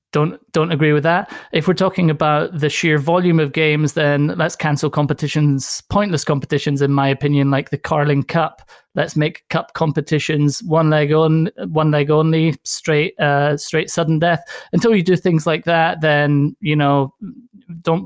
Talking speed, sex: 175 wpm, male